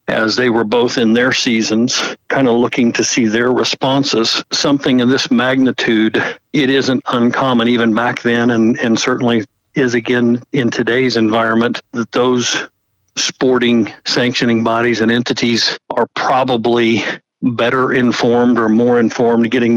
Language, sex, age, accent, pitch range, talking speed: English, male, 50-69, American, 115-125 Hz, 145 wpm